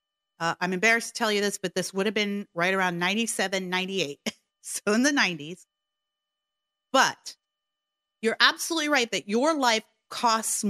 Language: English